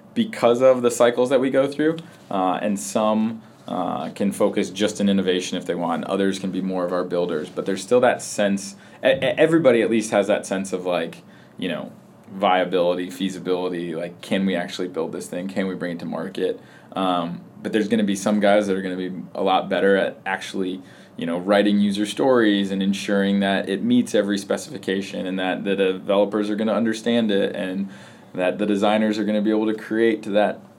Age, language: 20-39, English